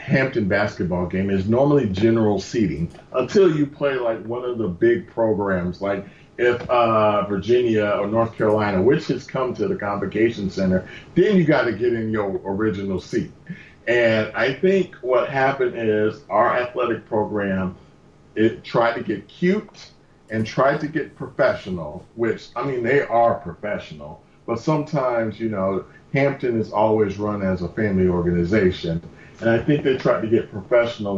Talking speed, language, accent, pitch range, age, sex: 160 wpm, English, American, 95-120 Hz, 40-59, male